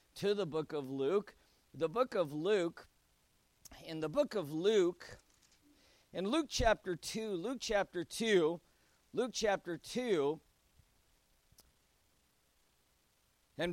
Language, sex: English, male